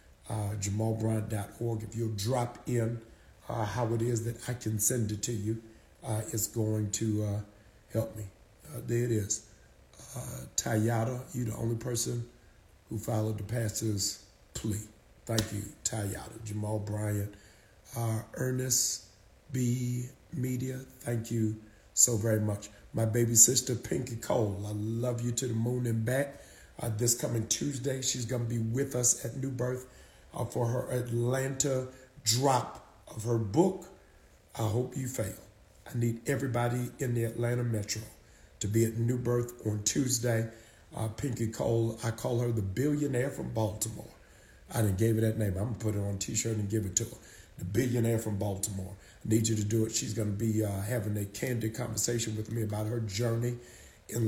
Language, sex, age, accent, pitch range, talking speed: English, male, 50-69, American, 105-120 Hz, 170 wpm